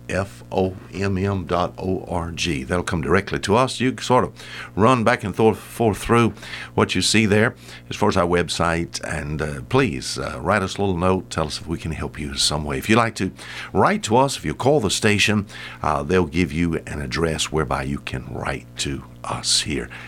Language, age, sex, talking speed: English, 60-79, male, 205 wpm